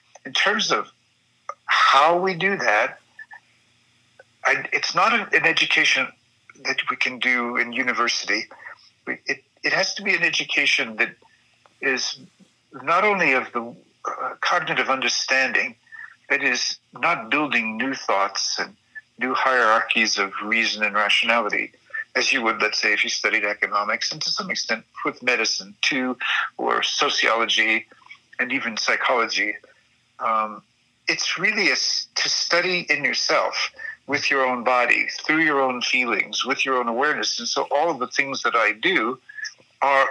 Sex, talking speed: male, 140 wpm